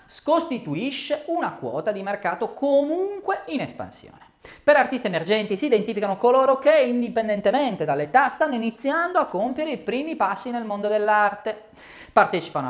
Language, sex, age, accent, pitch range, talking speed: Italian, male, 30-49, native, 200-275 Hz, 130 wpm